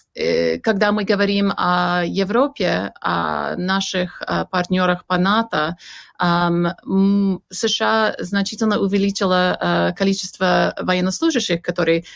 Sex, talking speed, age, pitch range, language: female, 80 wpm, 30-49, 175-205 Hz, Russian